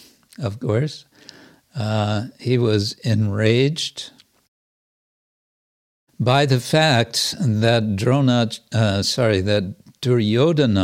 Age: 60-79